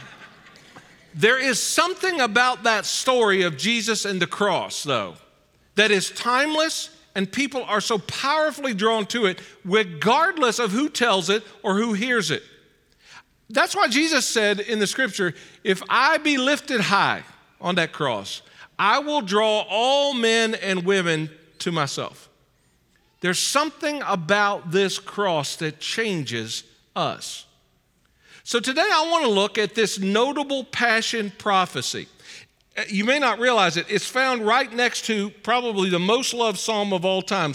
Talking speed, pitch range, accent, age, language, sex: 150 wpm, 190-245 Hz, American, 50-69, English, male